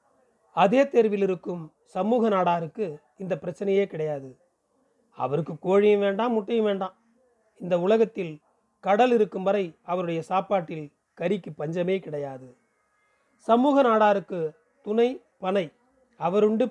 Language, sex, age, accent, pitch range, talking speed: Tamil, male, 30-49, native, 185-225 Hz, 100 wpm